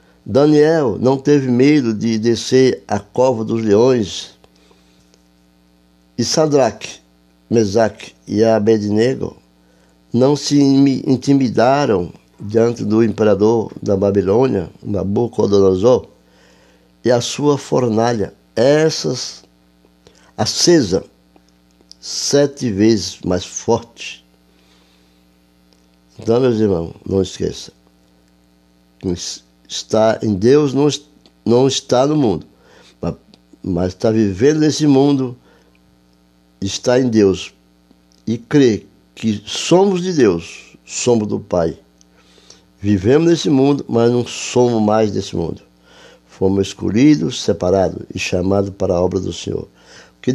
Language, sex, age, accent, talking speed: Portuguese, male, 60-79, Brazilian, 100 wpm